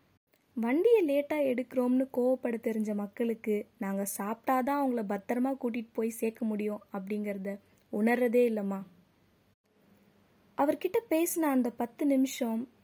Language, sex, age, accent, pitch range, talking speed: Tamil, female, 20-39, native, 215-260 Hz, 100 wpm